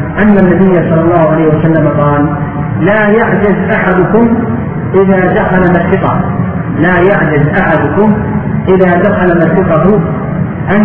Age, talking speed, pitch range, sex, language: 50-69, 110 wpm, 160-185 Hz, male, Arabic